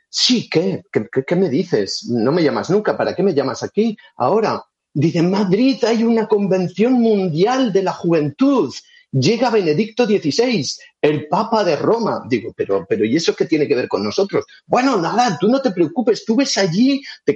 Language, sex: English, male